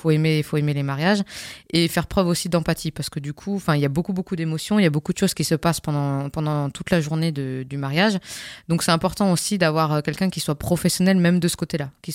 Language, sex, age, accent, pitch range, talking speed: French, female, 20-39, French, 155-185 Hz, 260 wpm